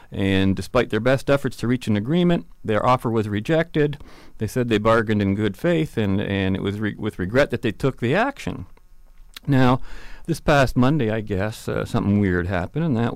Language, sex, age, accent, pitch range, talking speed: English, male, 40-59, American, 100-125 Hz, 200 wpm